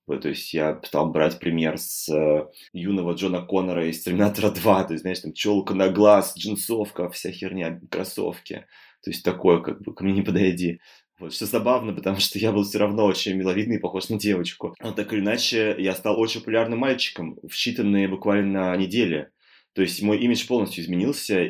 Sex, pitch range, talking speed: male, 85-105 Hz, 190 wpm